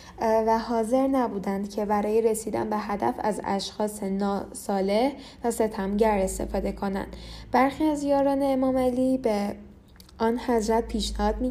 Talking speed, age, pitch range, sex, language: 130 wpm, 10-29, 195-240 Hz, female, Persian